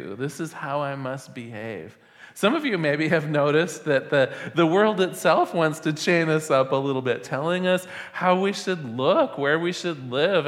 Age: 40-59